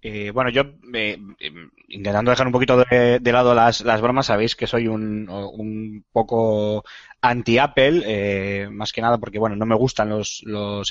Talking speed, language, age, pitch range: 175 wpm, Spanish, 20-39, 105-130 Hz